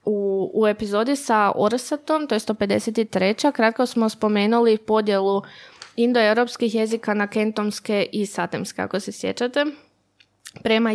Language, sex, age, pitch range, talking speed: Croatian, female, 20-39, 205-235 Hz, 120 wpm